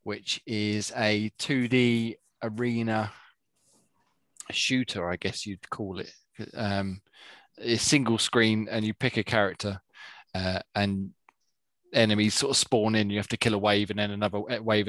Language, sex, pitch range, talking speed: English, male, 105-120 Hz, 150 wpm